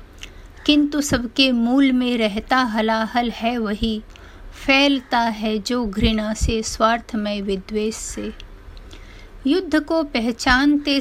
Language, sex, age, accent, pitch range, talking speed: Hindi, female, 50-69, native, 220-280 Hz, 100 wpm